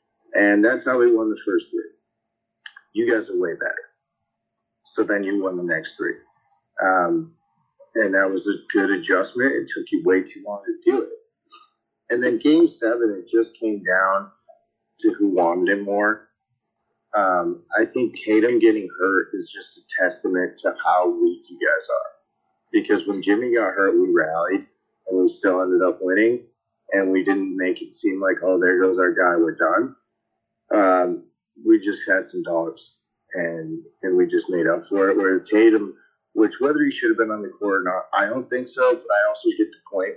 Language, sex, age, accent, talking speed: English, male, 30-49, American, 195 wpm